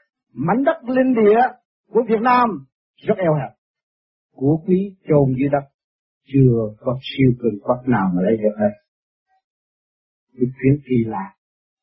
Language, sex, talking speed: Vietnamese, male, 155 wpm